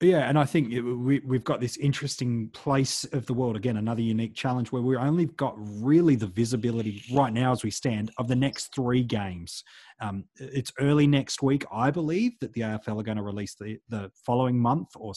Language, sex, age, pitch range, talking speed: English, male, 30-49, 115-140 Hz, 210 wpm